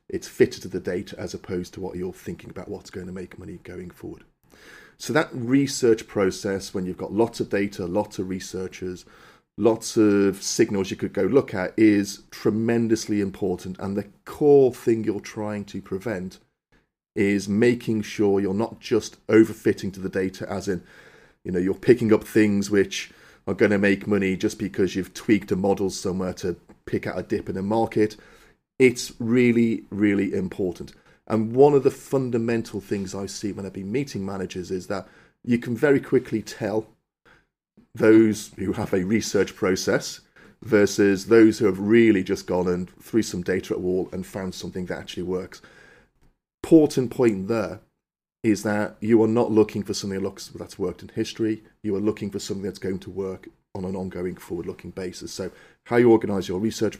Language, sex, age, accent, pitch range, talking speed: English, male, 40-59, British, 95-110 Hz, 185 wpm